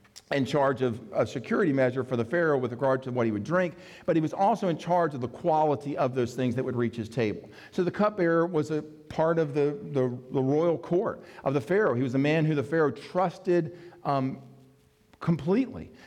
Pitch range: 125-165 Hz